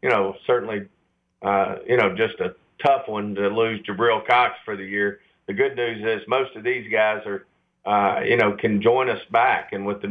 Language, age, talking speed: English, 50-69, 215 wpm